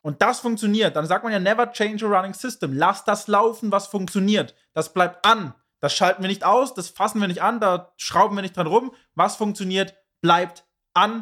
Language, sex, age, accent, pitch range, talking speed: German, male, 20-39, German, 175-220 Hz, 215 wpm